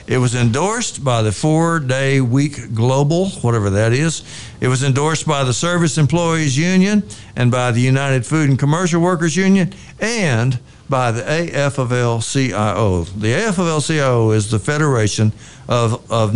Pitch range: 120-170 Hz